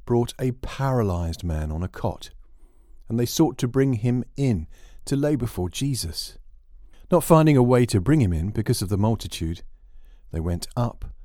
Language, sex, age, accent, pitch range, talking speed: English, male, 50-69, British, 80-120 Hz, 175 wpm